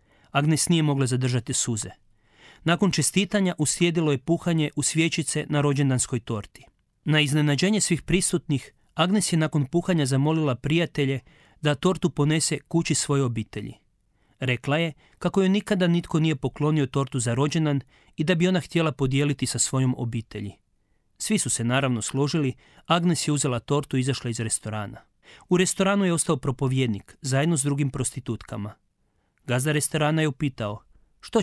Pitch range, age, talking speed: 120-160 Hz, 40-59, 150 wpm